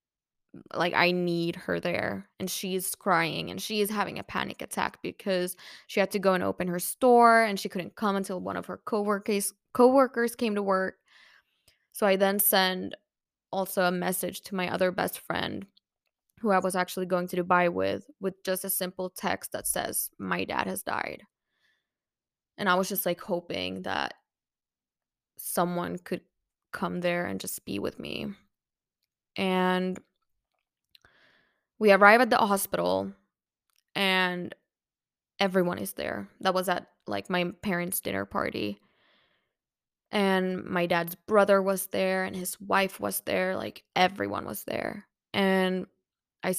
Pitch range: 175-195 Hz